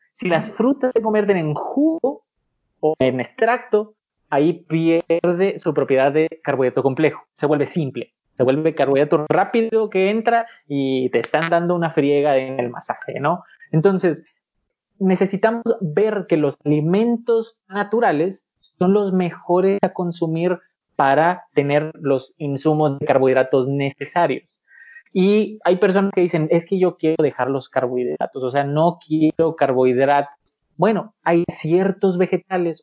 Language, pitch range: Spanish, 150-195 Hz